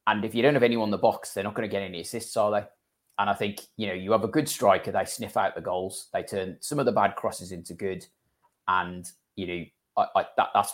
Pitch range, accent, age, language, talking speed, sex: 95-125 Hz, British, 20-39, English, 255 wpm, male